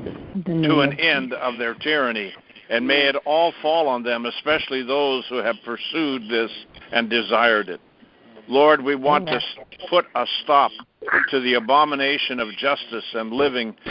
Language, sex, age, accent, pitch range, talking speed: English, male, 60-79, American, 120-150 Hz, 155 wpm